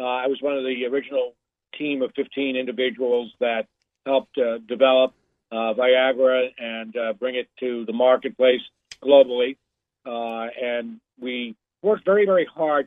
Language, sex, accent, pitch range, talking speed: English, male, American, 125-150 Hz, 150 wpm